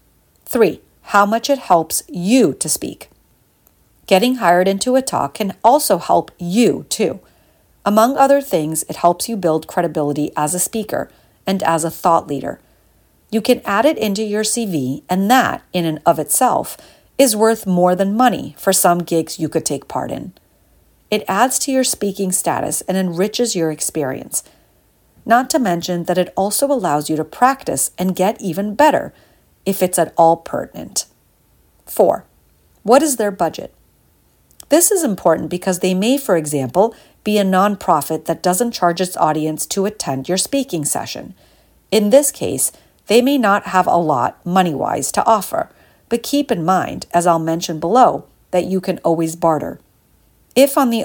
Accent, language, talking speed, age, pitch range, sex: American, English, 170 wpm, 40-59, 165-225 Hz, female